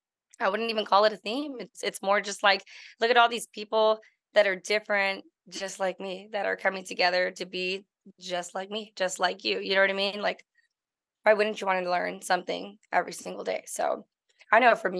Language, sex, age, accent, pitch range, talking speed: English, female, 20-39, American, 185-205 Hz, 220 wpm